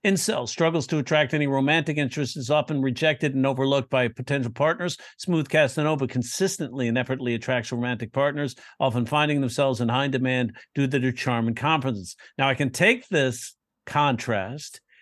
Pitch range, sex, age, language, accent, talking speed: 125-150 Hz, male, 50-69, English, American, 165 wpm